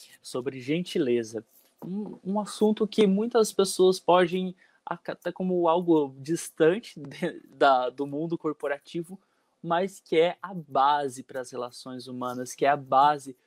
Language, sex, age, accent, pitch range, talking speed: Portuguese, male, 20-39, Brazilian, 130-170 Hz, 130 wpm